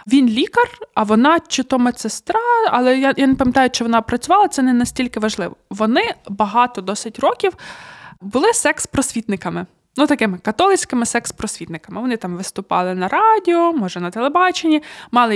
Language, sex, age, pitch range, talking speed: Ukrainian, female, 20-39, 215-285 Hz, 150 wpm